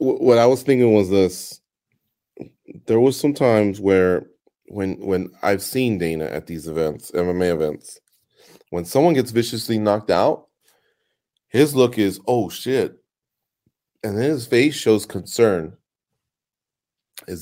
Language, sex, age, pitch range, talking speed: English, male, 30-49, 95-130 Hz, 135 wpm